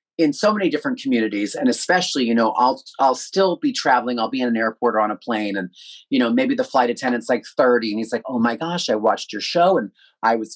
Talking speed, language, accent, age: 255 wpm, English, American, 30-49